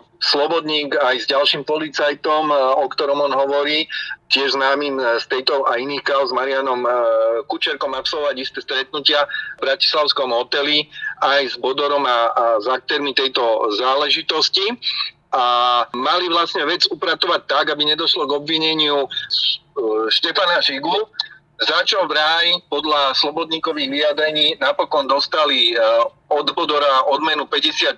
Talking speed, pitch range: 125 wpm, 140-185 Hz